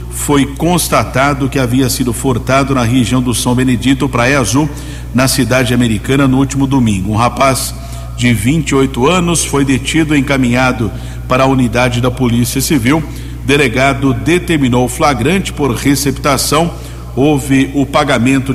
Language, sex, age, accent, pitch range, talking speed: Portuguese, male, 50-69, Brazilian, 120-140 Hz, 135 wpm